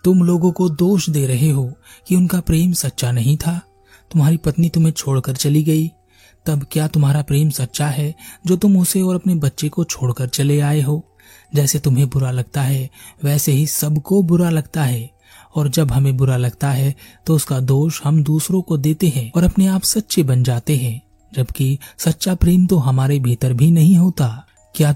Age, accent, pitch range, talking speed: 30-49, native, 130-165 Hz, 185 wpm